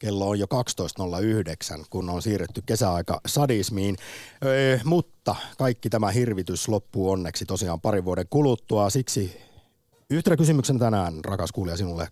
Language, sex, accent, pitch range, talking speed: Finnish, male, native, 95-125 Hz, 135 wpm